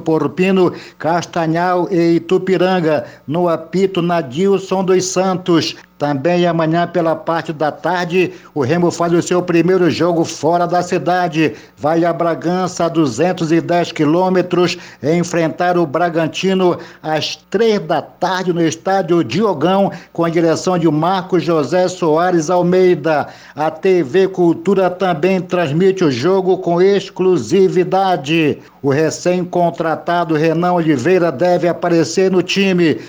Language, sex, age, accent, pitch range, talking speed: Portuguese, male, 60-79, Brazilian, 165-185 Hz, 120 wpm